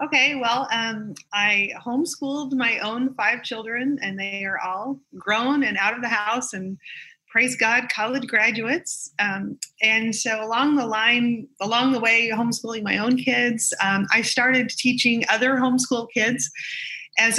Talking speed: 155 wpm